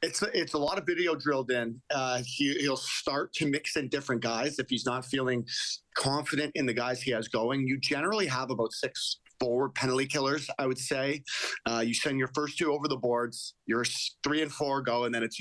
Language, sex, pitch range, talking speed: English, male, 115-135 Hz, 215 wpm